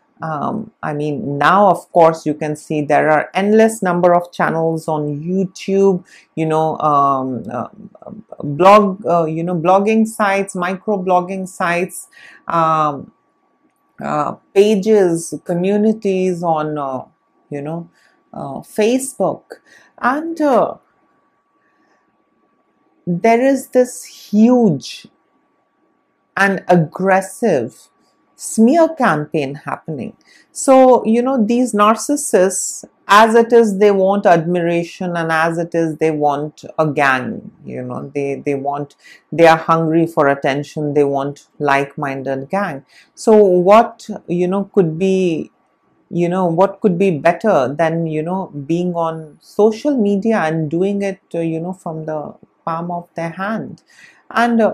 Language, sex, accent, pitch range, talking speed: English, female, Indian, 160-205 Hz, 130 wpm